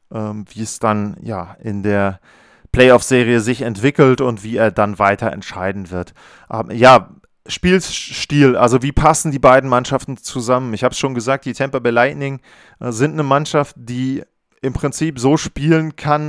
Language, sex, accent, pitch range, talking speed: German, male, German, 125-145 Hz, 165 wpm